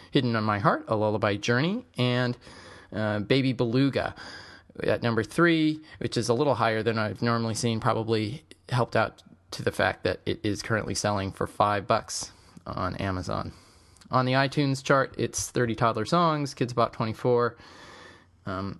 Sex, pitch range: male, 105-135 Hz